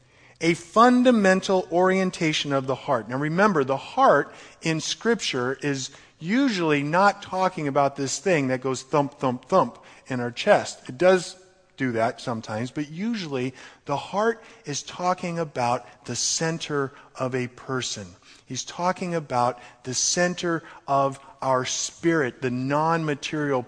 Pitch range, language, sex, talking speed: 125-165 Hz, English, male, 135 wpm